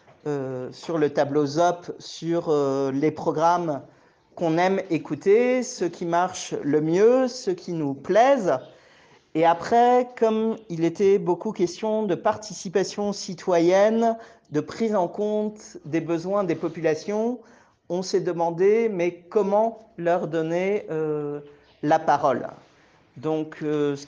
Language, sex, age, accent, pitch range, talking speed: French, male, 50-69, French, 155-190 Hz, 130 wpm